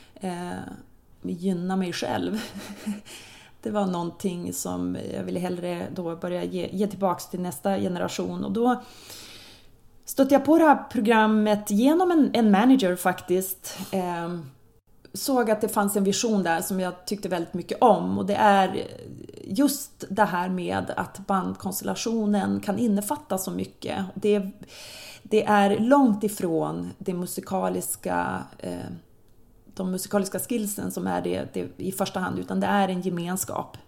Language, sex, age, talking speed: Swedish, female, 30-49, 145 wpm